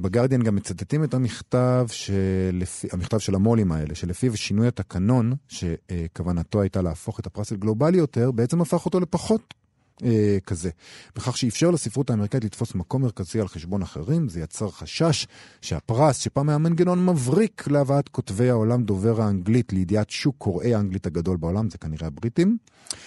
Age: 40-59